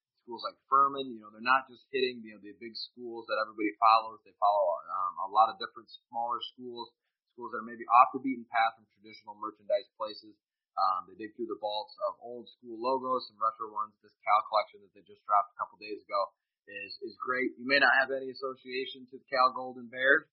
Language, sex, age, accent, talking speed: English, male, 20-39, American, 225 wpm